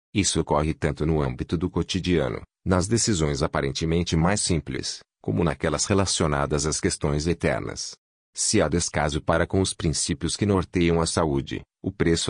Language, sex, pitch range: Portuguese, male, 75-95 Hz